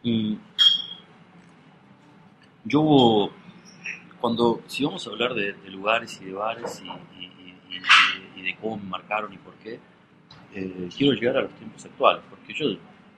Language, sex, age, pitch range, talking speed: Spanish, male, 30-49, 95-125 Hz, 145 wpm